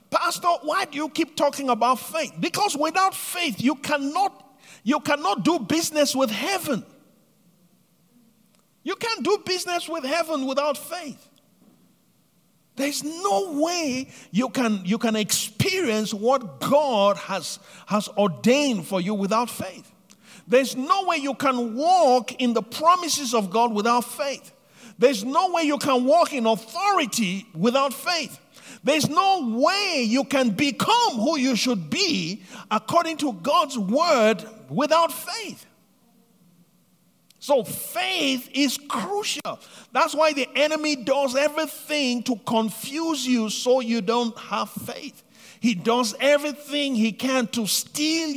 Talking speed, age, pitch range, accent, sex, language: 130 wpm, 50-69, 225-310 Hz, Nigerian, male, English